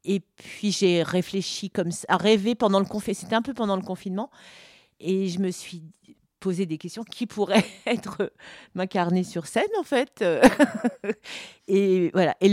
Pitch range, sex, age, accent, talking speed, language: 170-215 Hz, female, 40-59, French, 170 wpm, French